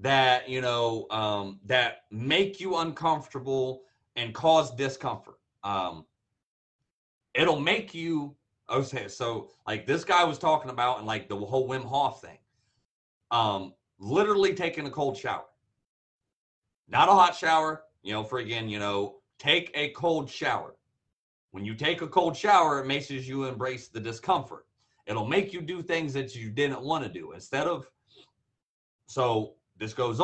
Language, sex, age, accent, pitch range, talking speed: English, male, 30-49, American, 110-155 Hz, 155 wpm